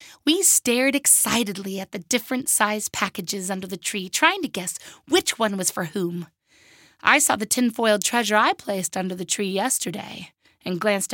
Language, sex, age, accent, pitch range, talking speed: English, female, 20-39, American, 185-235 Hz, 175 wpm